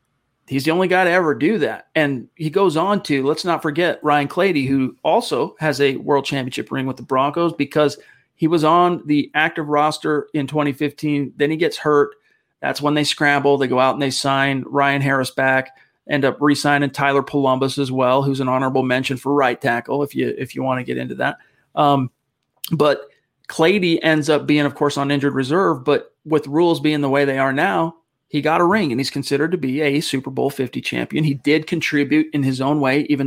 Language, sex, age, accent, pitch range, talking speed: English, male, 40-59, American, 135-160 Hz, 210 wpm